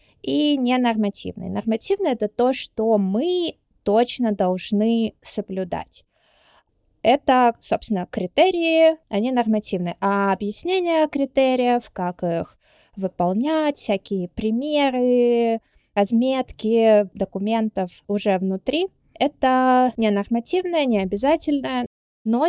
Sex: female